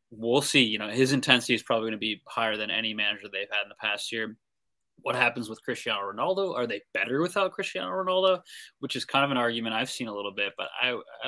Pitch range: 105-125 Hz